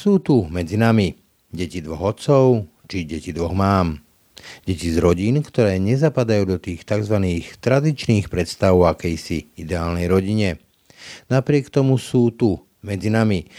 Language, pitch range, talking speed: Slovak, 95-125 Hz, 135 wpm